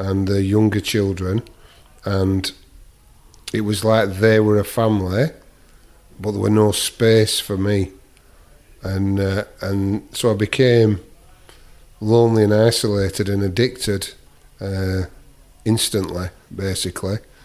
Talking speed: 115 wpm